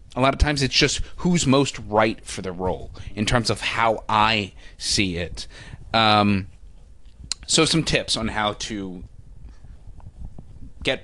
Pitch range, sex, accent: 95-125 Hz, male, American